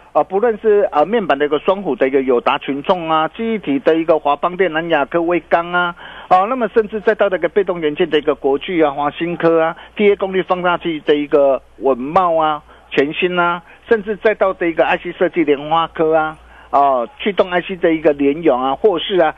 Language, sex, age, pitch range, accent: Chinese, male, 50-69, 145-210 Hz, native